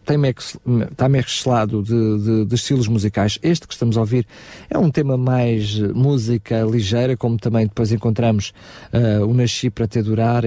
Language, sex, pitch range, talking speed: Portuguese, male, 105-130 Hz, 160 wpm